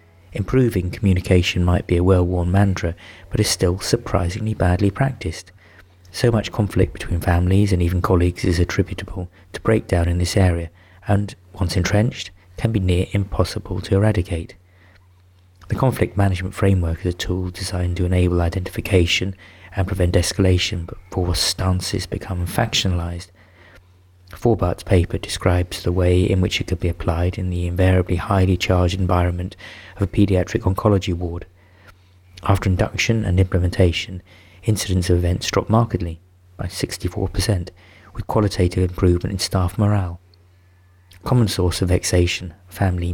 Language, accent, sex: English, British, male